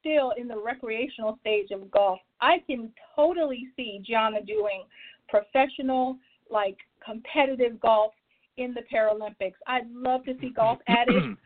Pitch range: 220-265 Hz